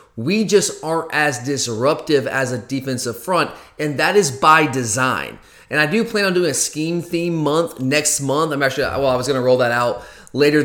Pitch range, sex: 130-150 Hz, male